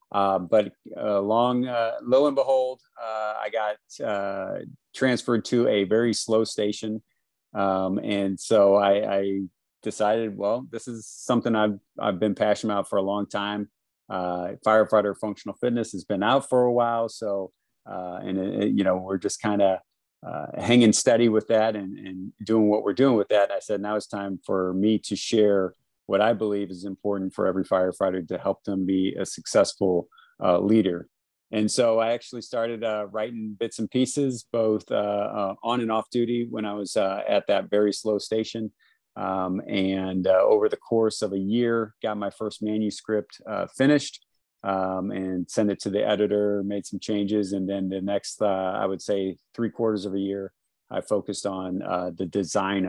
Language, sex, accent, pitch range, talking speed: English, male, American, 95-110 Hz, 190 wpm